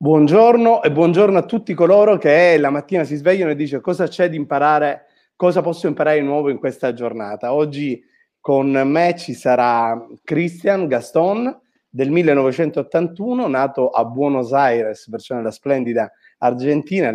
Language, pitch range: Italian, 130-175 Hz